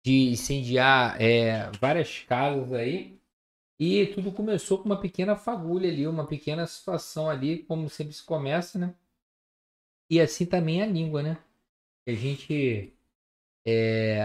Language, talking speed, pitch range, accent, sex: Portuguese, 140 wpm, 115-170 Hz, Brazilian, male